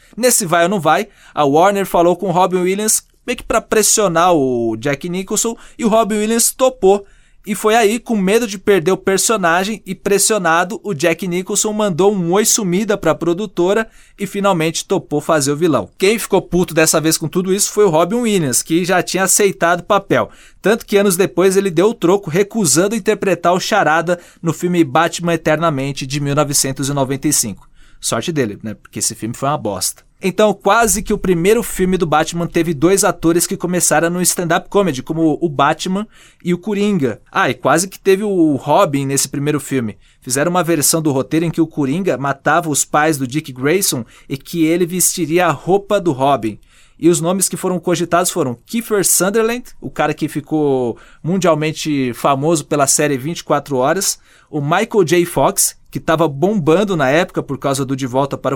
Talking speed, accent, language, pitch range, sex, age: 190 wpm, Brazilian, Portuguese, 155-195 Hz, male, 20-39